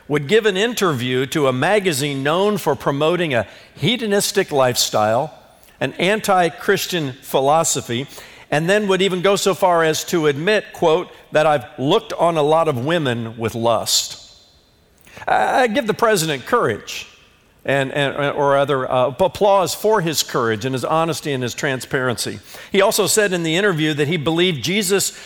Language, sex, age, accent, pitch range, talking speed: English, male, 50-69, American, 125-185 Hz, 160 wpm